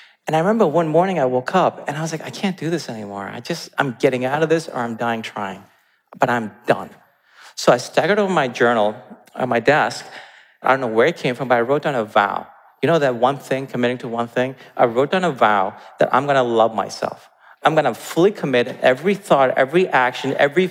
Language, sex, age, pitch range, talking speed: English, male, 40-59, 125-175 Hz, 240 wpm